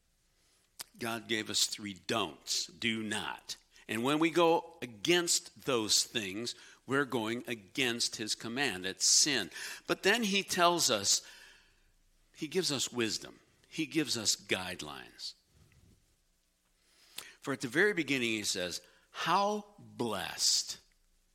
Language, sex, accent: English, male, American